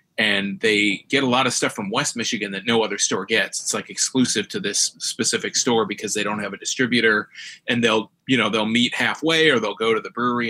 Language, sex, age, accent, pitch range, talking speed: English, male, 30-49, American, 105-120 Hz, 235 wpm